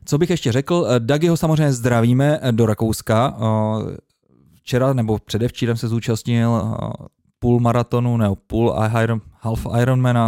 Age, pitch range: 20-39, 110-130 Hz